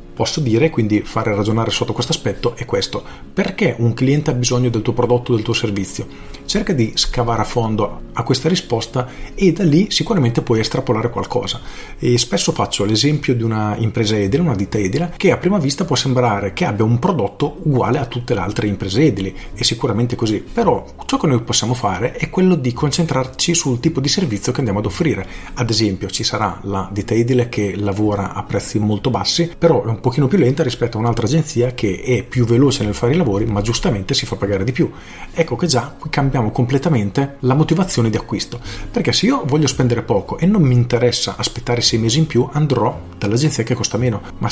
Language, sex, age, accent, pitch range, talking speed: Italian, male, 40-59, native, 110-145 Hz, 210 wpm